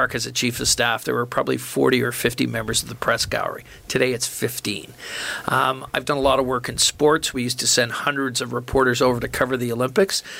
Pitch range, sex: 125-140 Hz, male